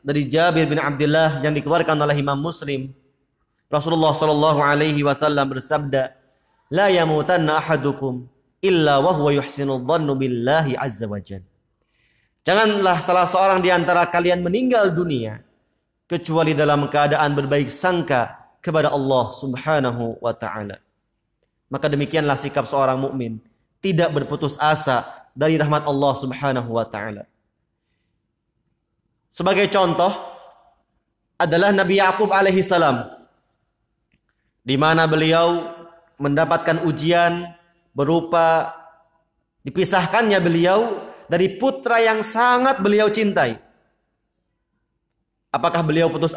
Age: 30-49